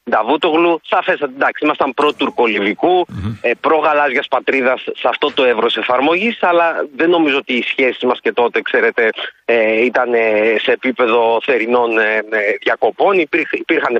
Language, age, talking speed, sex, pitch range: Greek, 30-49, 115 wpm, male, 135-190 Hz